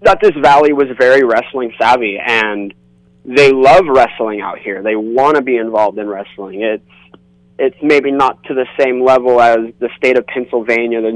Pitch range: 105-125 Hz